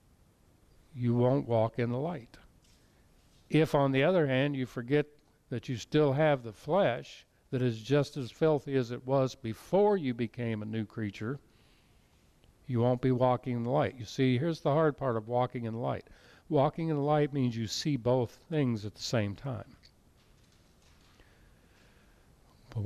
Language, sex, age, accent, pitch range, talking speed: English, male, 50-69, American, 110-145 Hz, 170 wpm